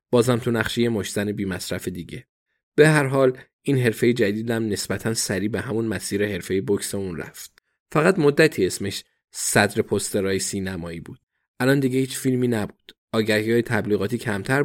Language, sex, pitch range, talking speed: Persian, male, 105-130 Hz, 150 wpm